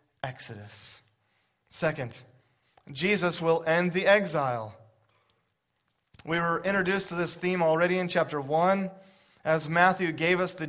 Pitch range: 145-185 Hz